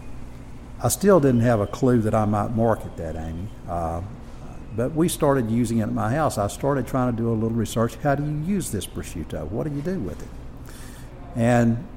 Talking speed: 210 wpm